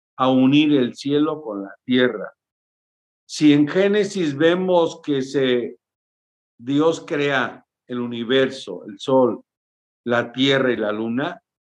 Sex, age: male, 50-69